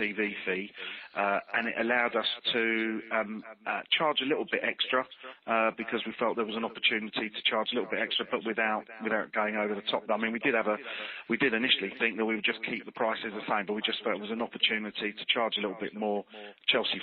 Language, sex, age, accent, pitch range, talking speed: English, male, 40-59, British, 105-115 Hz, 245 wpm